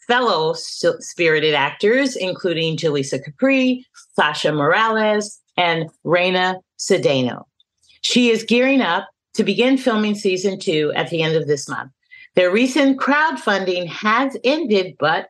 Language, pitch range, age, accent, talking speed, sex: English, 160-220 Hz, 40-59, American, 125 wpm, female